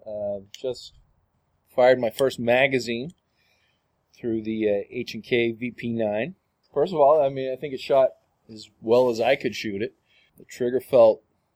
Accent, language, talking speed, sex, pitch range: American, English, 165 wpm, male, 105-135 Hz